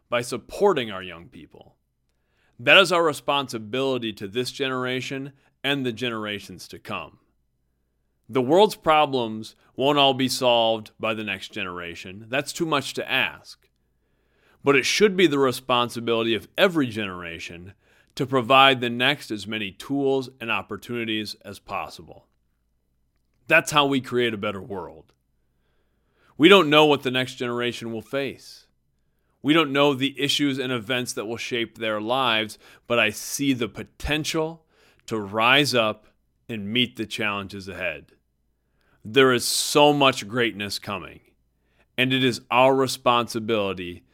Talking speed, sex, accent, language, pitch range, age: 145 wpm, male, American, English, 100-135 Hz, 40-59